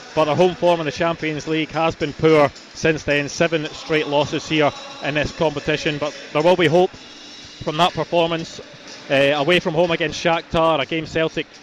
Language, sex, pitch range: English, male, 150-175 Hz